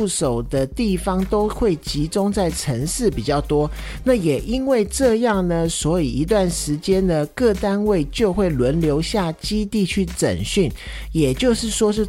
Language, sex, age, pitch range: Chinese, male, 50-69, 150-210 Hz